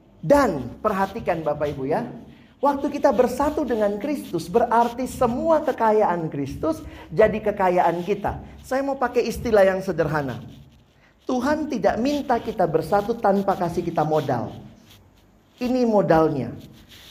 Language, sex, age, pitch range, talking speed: Indonesian, male, 40-59, 165-255 Hz, 120 wpm